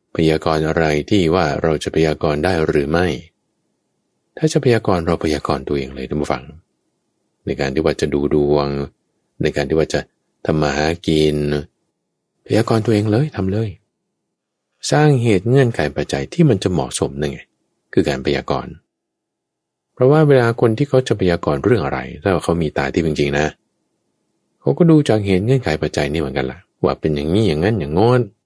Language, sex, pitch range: English, male, 75-110 Hz